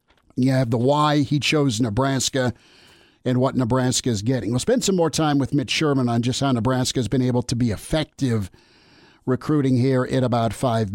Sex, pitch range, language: male, 130-155 Hz, English